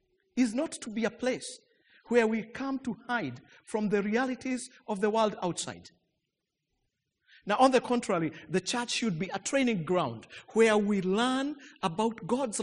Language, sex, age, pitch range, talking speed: English, male, 50-69, 190-260 Hz, 160 wpm